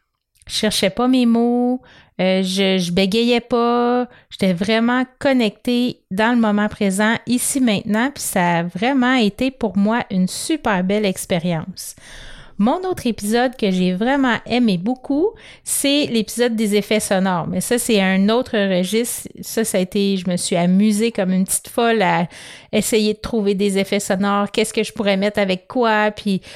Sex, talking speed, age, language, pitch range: female, 170 wpm, 30-49, French, 190-230 Hz